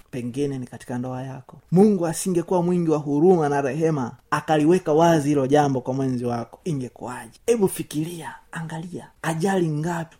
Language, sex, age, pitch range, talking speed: Swahili, male, 30-49, 125-155 Hz, 160 wpm